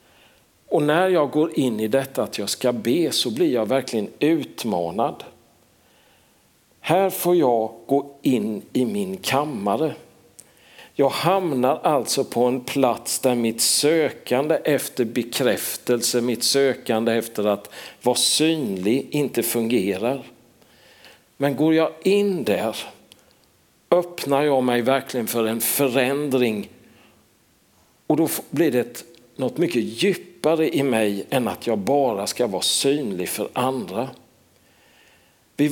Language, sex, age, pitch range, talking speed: Swedish, male, 50-69, 115-165 Hz, 125 wpm